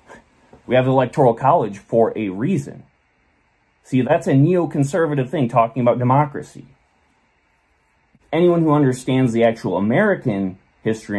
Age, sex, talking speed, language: 30-49, male, 125 wpm, English